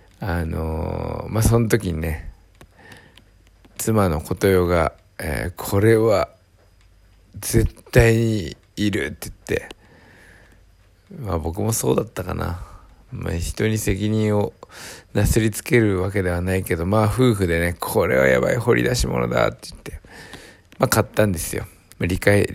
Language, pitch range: Japanese, 90-110 Hz